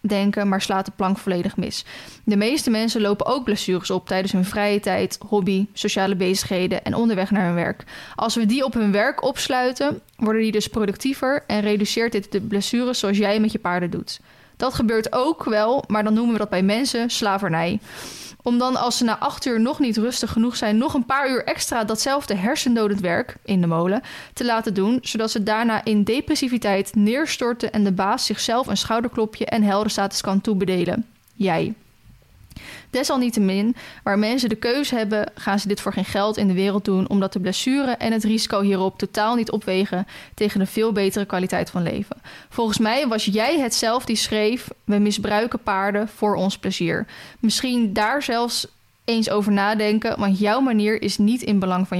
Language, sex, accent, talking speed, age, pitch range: Dutch, female, Dutch, 190 wpm, 10-29, 200-230 Hz